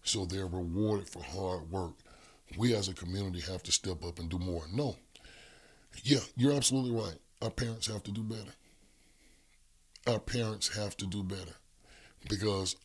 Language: English